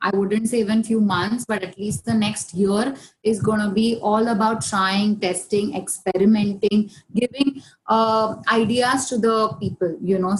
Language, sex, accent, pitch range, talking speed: English, female, Indian, 185-220 Hz, 160 wpm